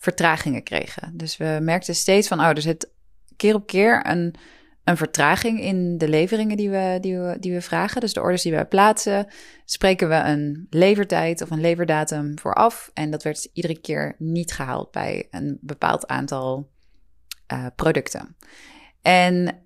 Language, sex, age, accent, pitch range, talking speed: Dutch, female, 20-39, Dutch, 150-185 Hz, 155 wpm